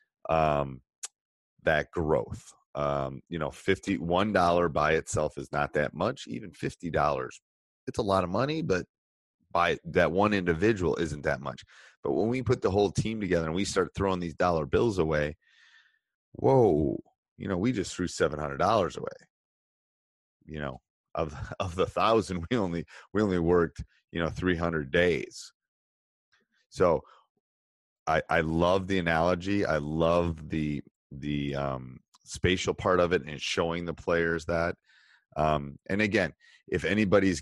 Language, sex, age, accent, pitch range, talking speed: English, male, 30-49, American, 75-95 Hz, 155 wpm